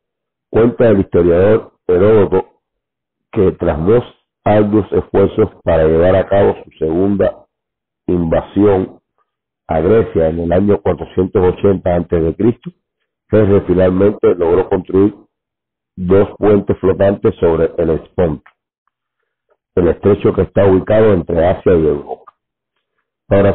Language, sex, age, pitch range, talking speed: Spanish, male, 50-69, 90-105 Hz, 110 wpm